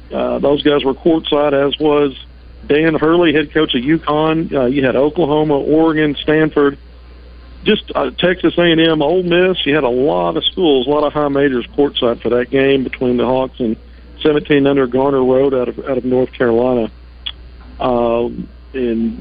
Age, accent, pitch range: 50-69, American, 120-150 Hz